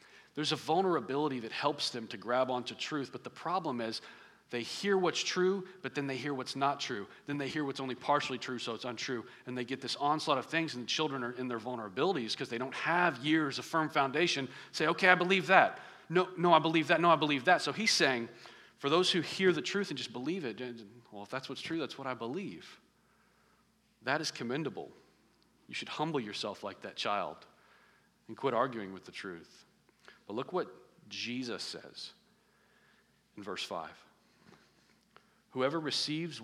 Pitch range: 120-155 Hz